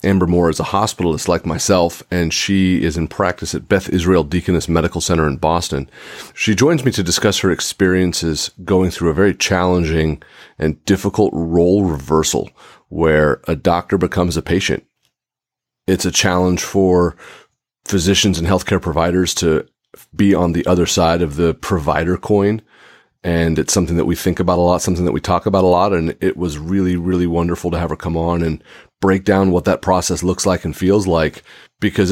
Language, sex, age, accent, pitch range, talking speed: English, male, 40-59, American, 85-95 Hz, 185 wpm